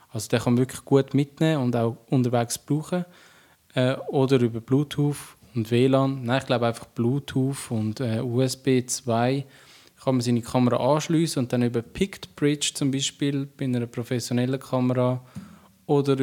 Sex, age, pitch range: male, 20-39, 125-140 Hz